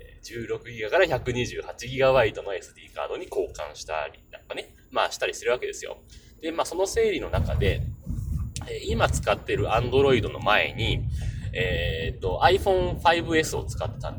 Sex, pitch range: male, 110-170 Hz